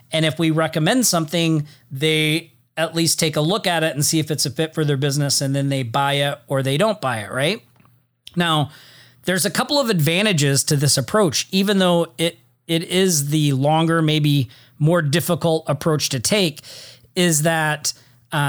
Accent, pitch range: American, 140-180 Hz